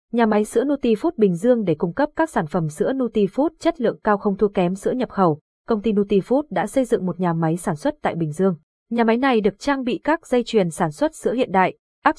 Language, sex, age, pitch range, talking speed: Vietnamese, female, 20-39, 180-245 Hz, 255 wpm